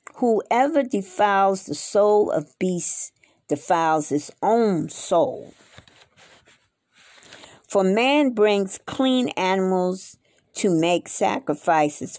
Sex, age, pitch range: female, 50-69, 160-210 Hz